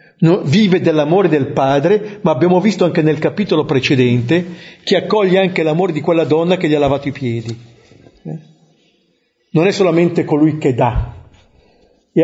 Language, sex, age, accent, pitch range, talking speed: Italian, male, 50-69, native, 135-175 Hz, 155 wpm